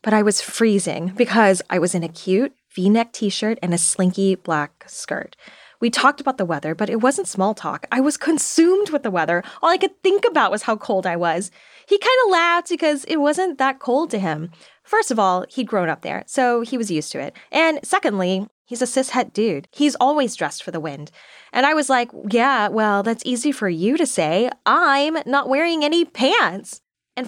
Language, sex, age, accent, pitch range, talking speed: English, female, 10-29, American, 185-290 Hz, 215 wpm